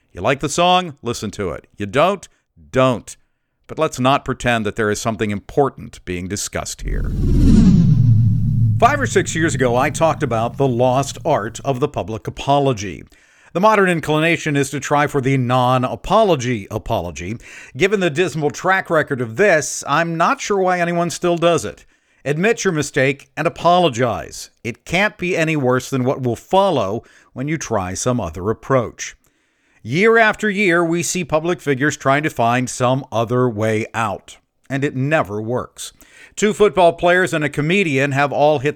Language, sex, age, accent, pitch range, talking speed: English, male, 50-69, American, 120-165 Hz, 170 wpm